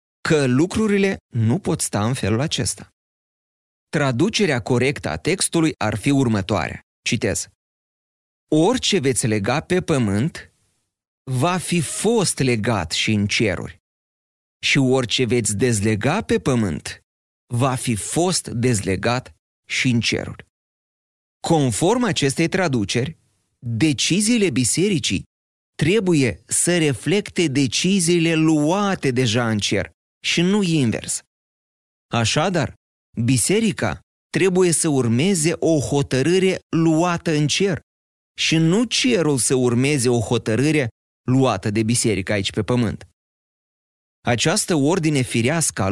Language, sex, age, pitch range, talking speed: Romanian, male, 30-49, 110-160 Hz, 110 wpm